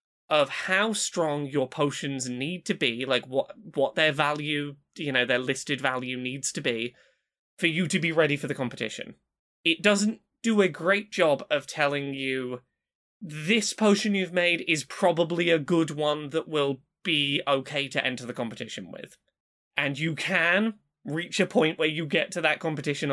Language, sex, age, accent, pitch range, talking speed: English, male, 20-39, British, 140-190 Hz, 175 wpm